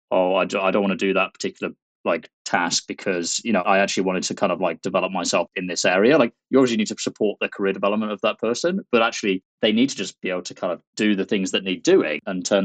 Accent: British